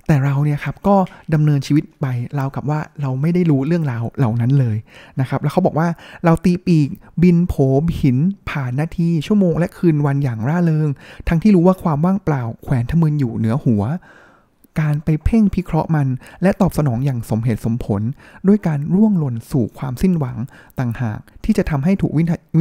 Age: 20-39